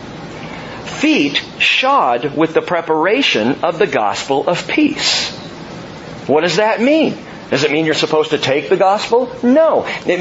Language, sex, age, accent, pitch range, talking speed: English, male, 50-69, American, 160-235 Hz, 145 wpm